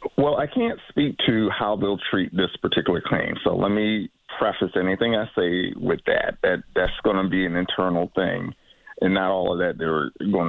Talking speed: 200 wpm